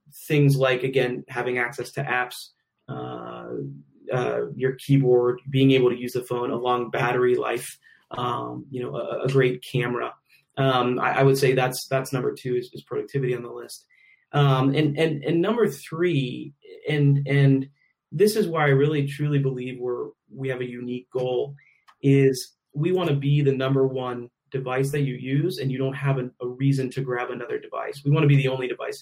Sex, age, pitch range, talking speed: male, 30-49, 125-145 Hz, 195 wpm